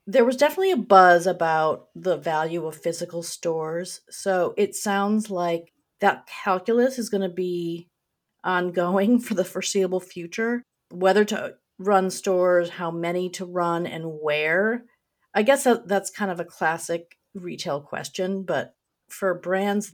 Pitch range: 170-215 Hz